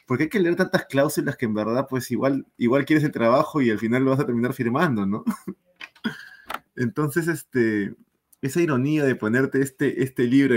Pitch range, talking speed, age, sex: 110-140 Hz, 185 wpm, 20-39, male